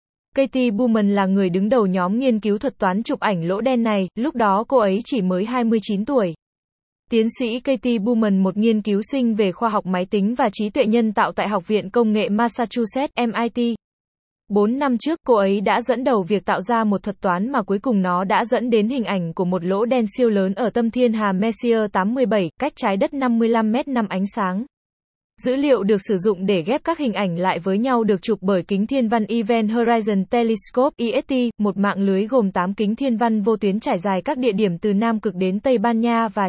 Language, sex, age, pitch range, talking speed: Vietnamese, female, 20-39, 200-240 Hz, 225 wpm